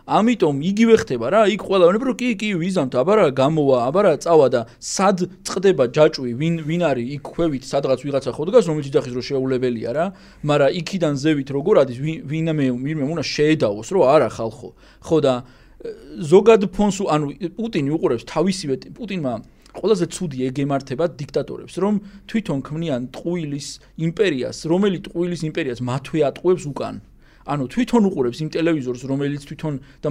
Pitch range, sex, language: 130-180 Hz, male, English